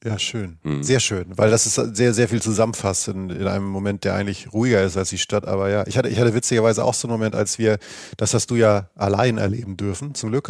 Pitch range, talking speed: 105-130 Hz, 250 wpm